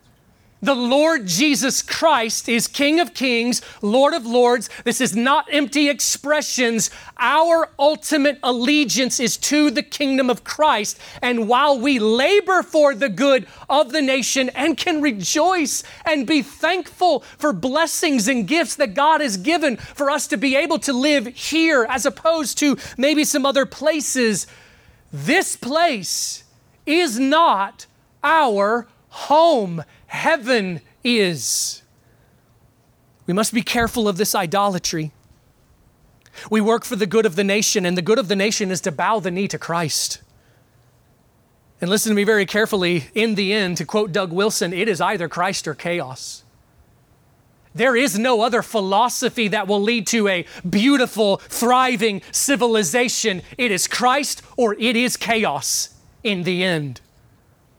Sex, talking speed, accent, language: male, 145 wpm, American, English